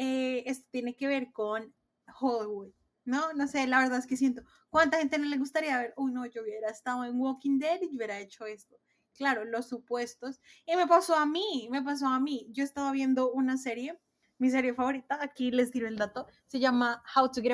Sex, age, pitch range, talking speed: female, 20-39, 230-275 Hz, 220 wpm